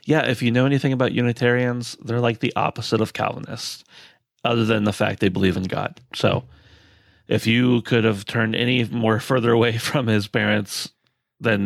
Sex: male